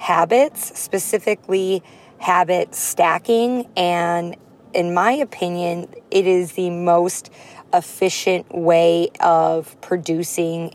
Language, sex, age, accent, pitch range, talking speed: English, female, 20-39, American, 170-200 Hz, 90 wpm